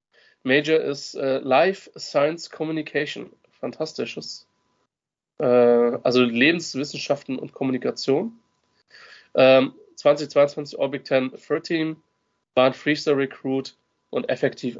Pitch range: 125-150 Hz